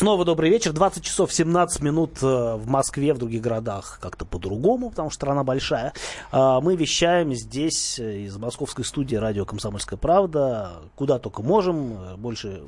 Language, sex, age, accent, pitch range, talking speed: Russian, male, 30-49, native, 110-160 Hz, 145 wpm